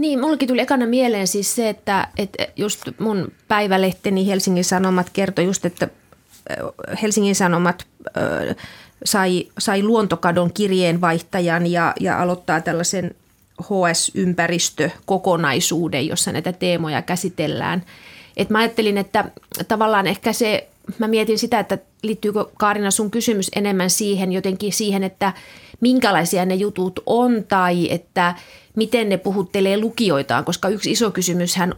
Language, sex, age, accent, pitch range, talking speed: Finnish, female, 30-49, native, 180-210 Hz, 125 wpm